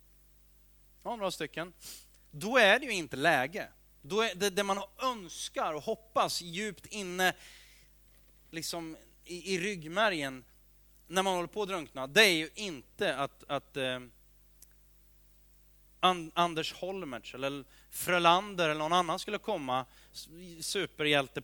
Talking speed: 120 wpm